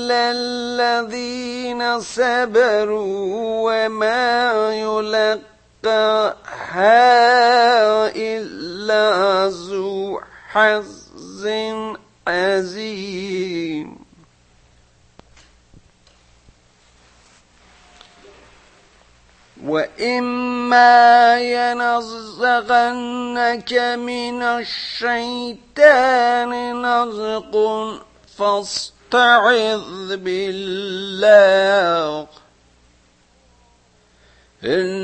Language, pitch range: Persian, 145-235 Hz